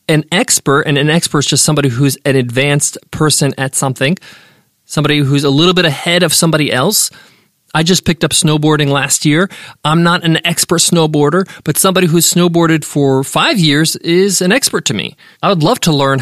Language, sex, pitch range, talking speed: English, male, 145-190 Hz, 190 wpm